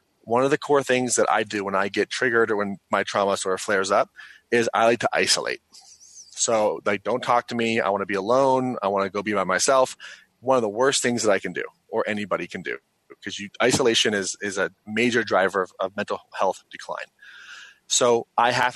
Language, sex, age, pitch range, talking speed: English, male, 30-49, 105-125 Hz, 225 wpm